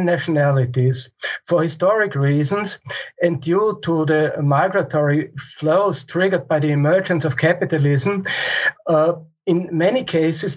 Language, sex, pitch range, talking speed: English, male, 150-185 Hz, 115 wpm